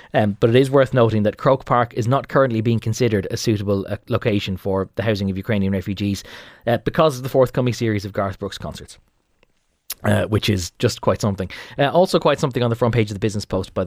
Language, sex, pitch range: English, male, 100-130 Hz